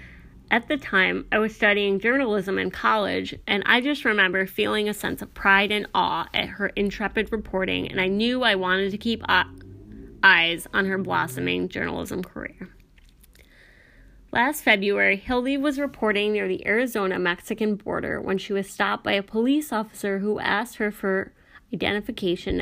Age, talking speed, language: 20-39, 155 wpm, English